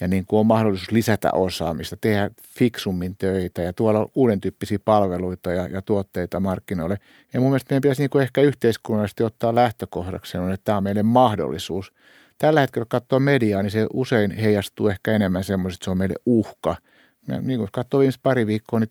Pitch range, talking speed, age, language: 95-120 Hz, 180 wpm, 60-79, Finnish